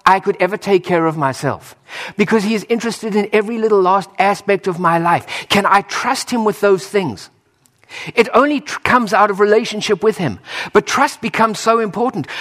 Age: 50-69